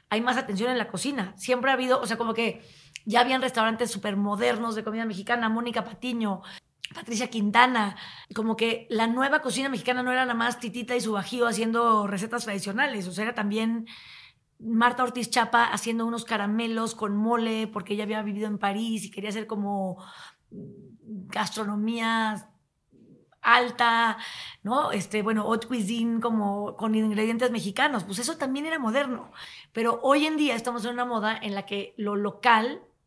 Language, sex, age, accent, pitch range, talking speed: Spanish, female, 30-49, Mexican, 205-235 Hz, 170 wpm